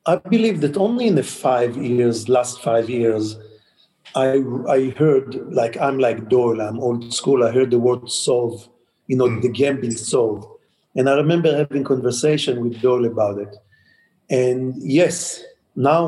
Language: English